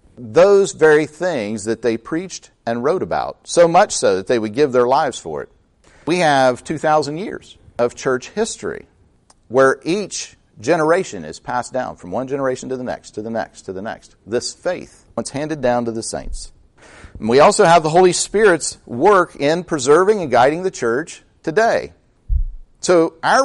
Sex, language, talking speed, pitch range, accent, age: male, English, 175 wpm, 120-170 Hz, American, 50-69